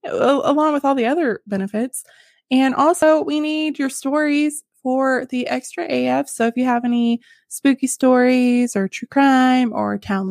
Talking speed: 165 wpm